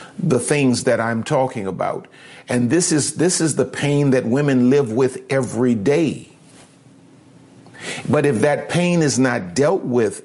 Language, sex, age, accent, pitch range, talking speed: English, male, 50-69, American, 120-155 Hz, 165 wpm